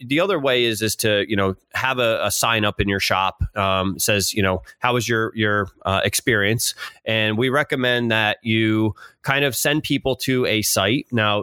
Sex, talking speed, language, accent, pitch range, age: male, 205 wpm, English, American, 100-120 Hz, 30-49